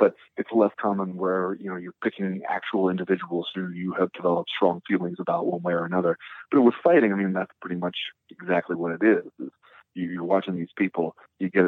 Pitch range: 90-110 Hz